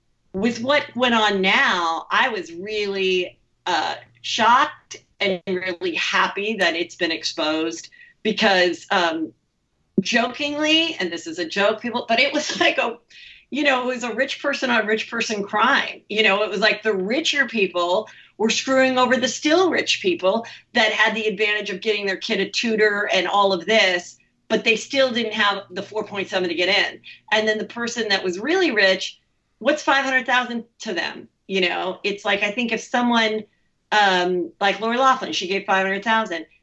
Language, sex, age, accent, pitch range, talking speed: English, female, 40-59, American, 190-240 Hz, 175 wpm